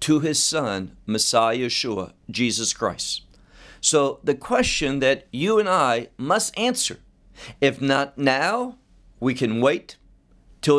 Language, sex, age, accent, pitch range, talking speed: English, male, 50-69, American, 125-175 Hz, 130 wpm